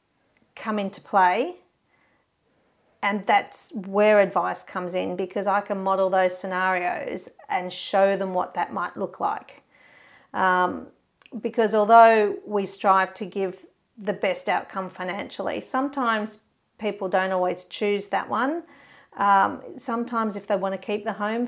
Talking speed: 135 wpm